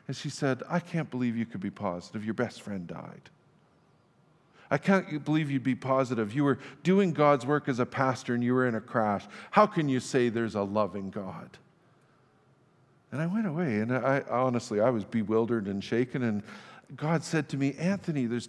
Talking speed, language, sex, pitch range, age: 195 wpm, English, male, 120-165 Hz, 50-69